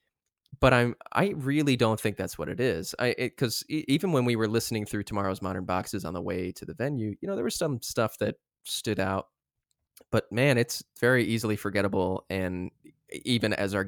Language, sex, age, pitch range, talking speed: English, male, 20-39, 95-125 Hz, 210 wpm